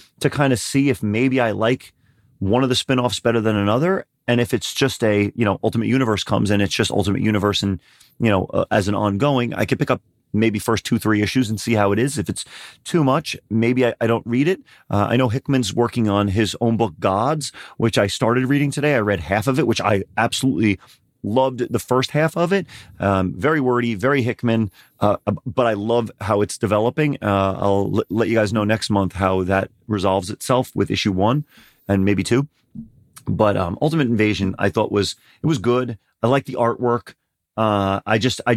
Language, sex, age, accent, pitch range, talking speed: English, male, 30-49, American, 105-130 Hz, 215 wpm